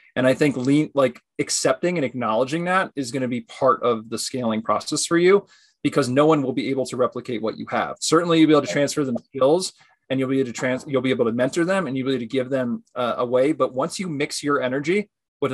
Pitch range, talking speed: 125-155 Hz, 255 wpm